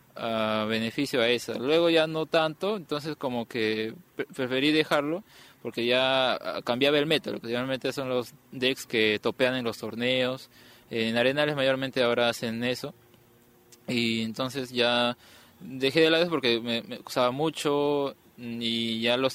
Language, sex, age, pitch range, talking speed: Spanish, male, 20-39, 115-140 Hz, 145 wpm